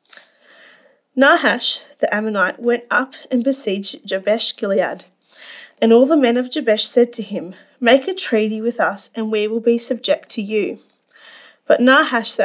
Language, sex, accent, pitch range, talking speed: English, female, Australian, 215-270 Hz, 160 wpm